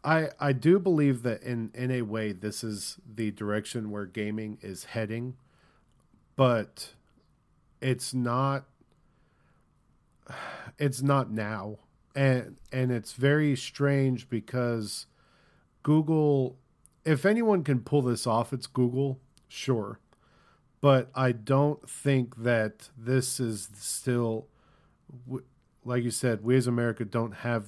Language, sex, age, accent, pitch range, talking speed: English, male, 40-59, American, 115-140 Hz, 120 wpm